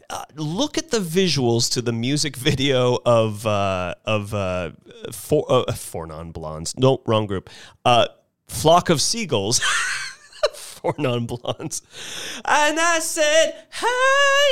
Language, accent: English, American